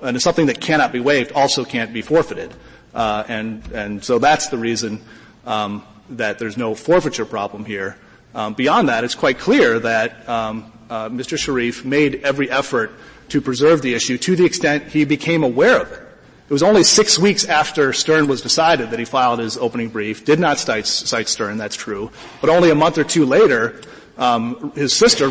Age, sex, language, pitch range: 30-49, male, English, 120-180 Hz